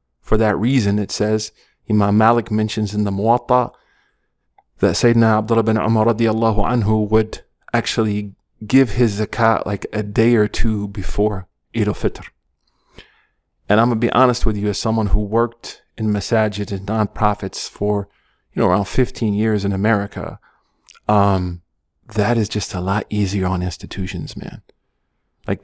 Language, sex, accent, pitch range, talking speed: English, male, American, 100-110 Hz, 155 wpm